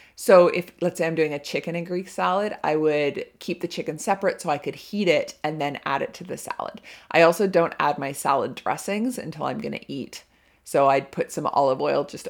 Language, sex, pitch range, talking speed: English, female, 150-185 Hz, 230 wpm